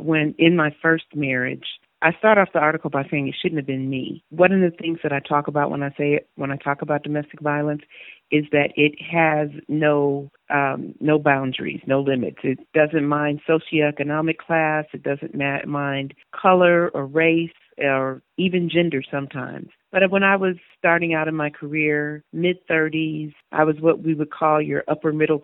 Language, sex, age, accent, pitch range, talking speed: English, female, 40-59, American, 145-165 Hz, 185 wpm